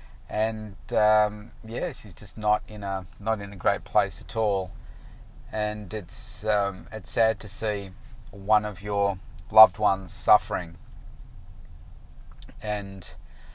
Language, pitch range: English, 95-110 Hz